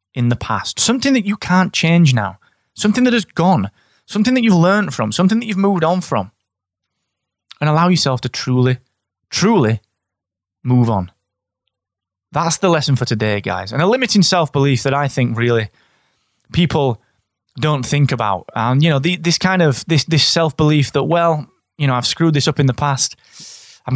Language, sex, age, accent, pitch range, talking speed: English, male, 20-39, British, 120-165 Hz, 185 wpm